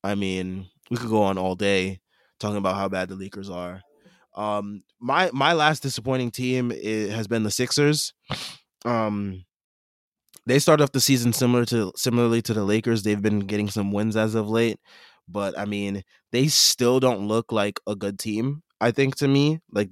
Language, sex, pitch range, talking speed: English, male, 105-135 Hz, 185 wpm